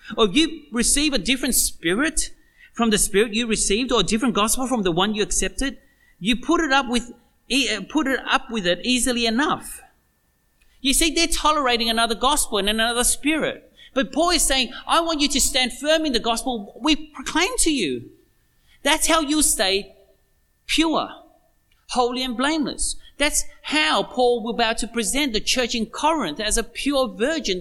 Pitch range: 210-295 Hz